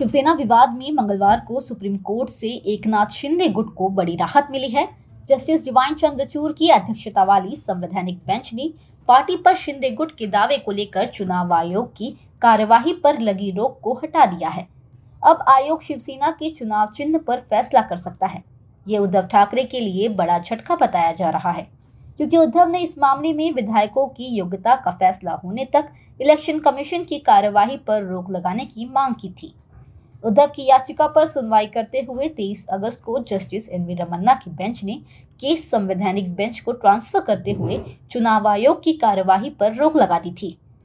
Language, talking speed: Hindi, 180 wpm